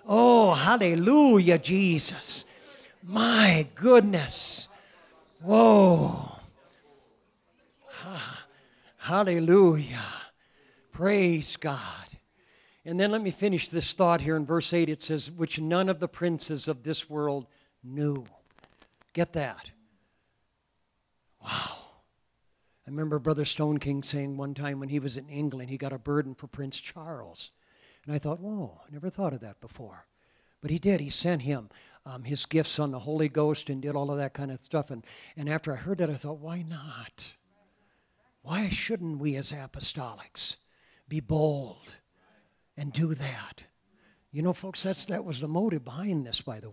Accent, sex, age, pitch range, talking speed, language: American, male, 60-79, 140-175 Hz, 150 wpm, English